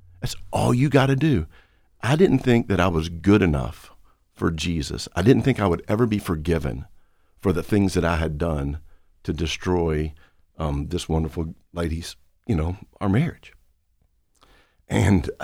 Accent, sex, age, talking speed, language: American, male, 50-69, 165 wpm, English